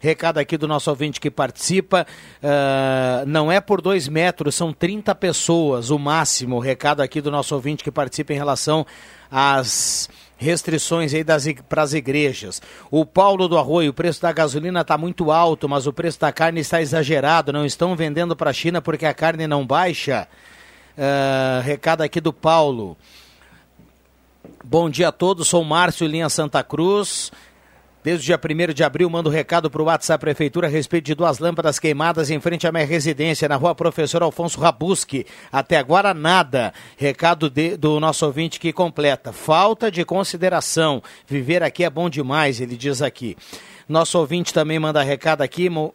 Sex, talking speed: male, 170 wpm